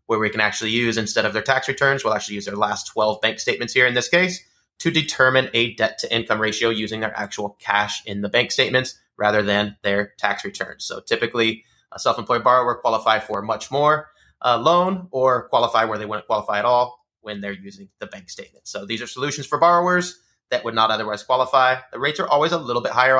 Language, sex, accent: English, male, American